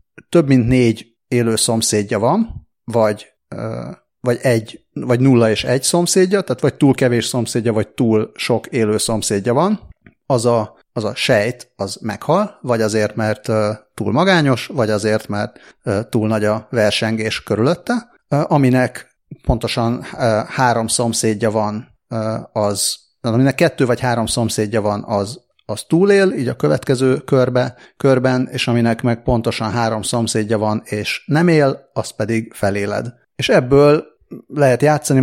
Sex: male